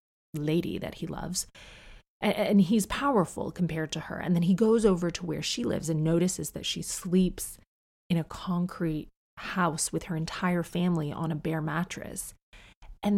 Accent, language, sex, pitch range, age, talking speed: American, English, female, 165-195 Hz, 30-49, 170 wpm